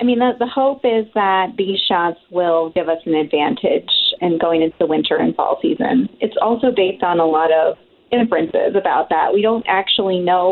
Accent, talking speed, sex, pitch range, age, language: American, 205 wpm, female, 165-220 Hz, 30-49, English